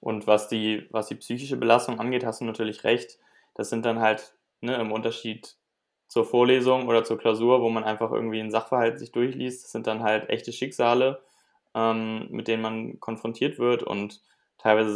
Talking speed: 185 wpm